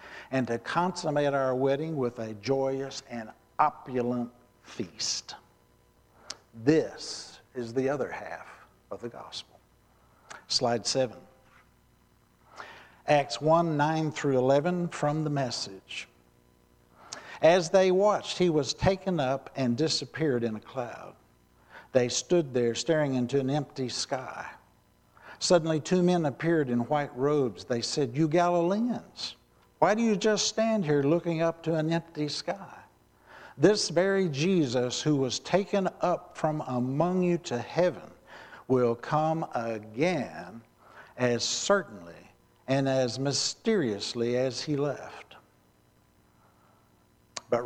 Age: 60-79